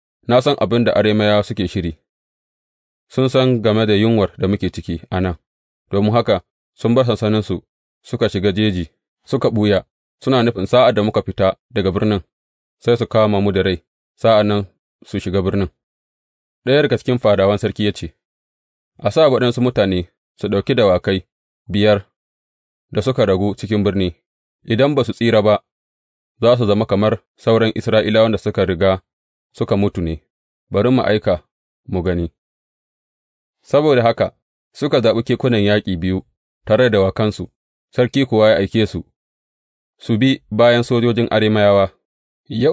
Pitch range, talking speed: 95-120 Hz, 140 wpm